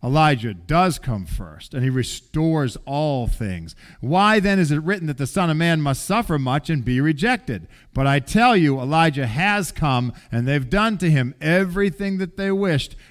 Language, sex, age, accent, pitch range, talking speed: English, male, 40-59, American, 155-235 Hz, 190 wpm